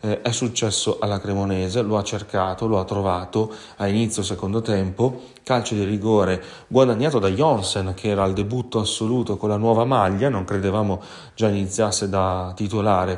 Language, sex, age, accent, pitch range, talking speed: Italian, male, 30-49, native, 95-110 Hz, 160 wpm